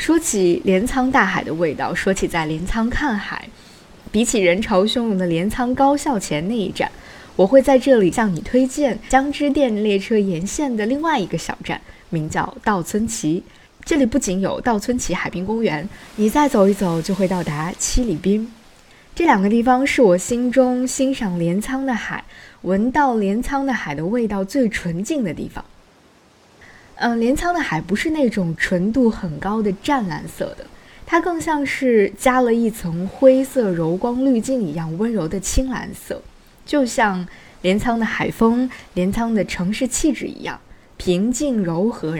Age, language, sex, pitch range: 20-39, Chinese, female, 185-260 Hz